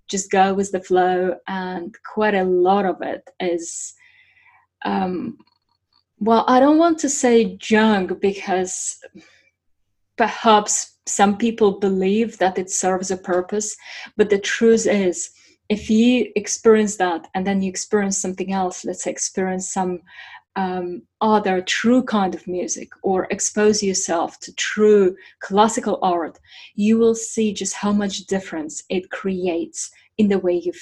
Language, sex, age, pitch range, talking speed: English, female, 30-49, 185-215 Hz, 145 wpm